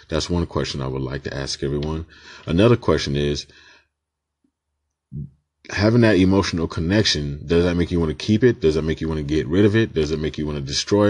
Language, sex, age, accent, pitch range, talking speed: English, male, 30-49, American, 75-95 Hz, 220 wpm